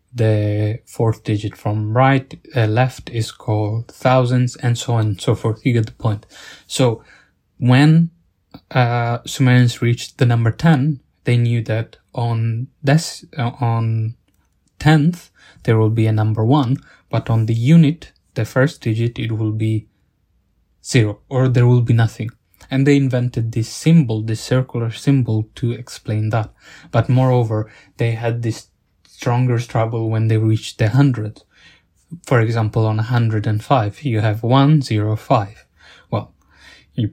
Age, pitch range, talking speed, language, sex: 20-39, 110-130 Hz, 155 wpm, English, male